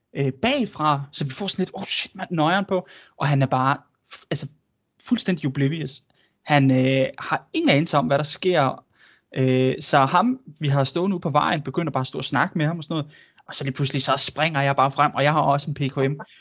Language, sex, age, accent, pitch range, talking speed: Danish, male, 20-39, native, 140-195 Hz, 225 wpm